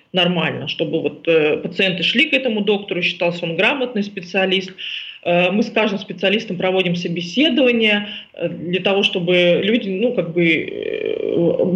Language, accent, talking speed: Russian, native, 145 wpm